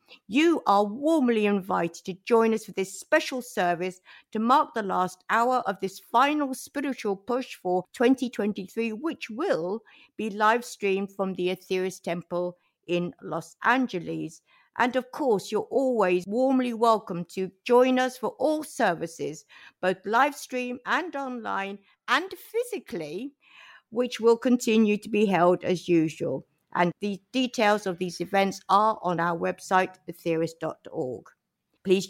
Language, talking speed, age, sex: English, 140 wpm, 60-79, female